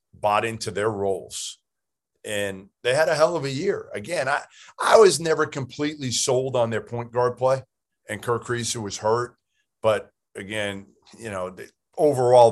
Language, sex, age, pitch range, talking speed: English, male, 40-59, 100-120 Hz, 170 wpm